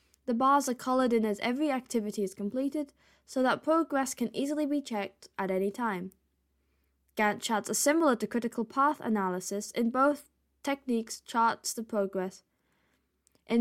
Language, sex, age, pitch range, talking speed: English, female, 10-29, 200-260 Hz, 155 wpm